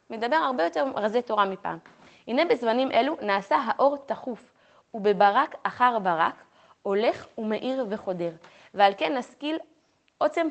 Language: Hebrew